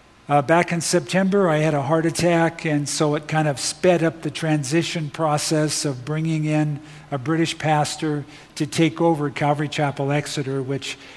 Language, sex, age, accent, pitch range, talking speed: English, male, 50-69, American, 140-155 Hz, 170 wpm